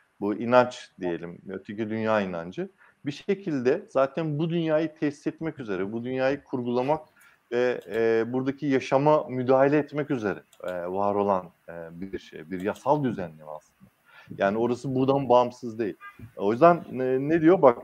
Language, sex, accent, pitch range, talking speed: Turkish, male, native, 110-150 Hz, 140 wpm